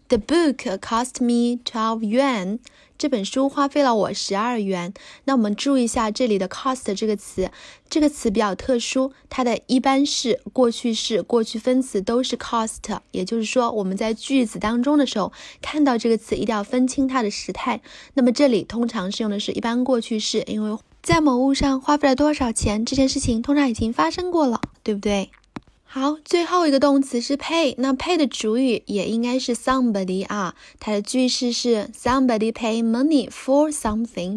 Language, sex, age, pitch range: Chinese, female, 20-39, 220-275 Hz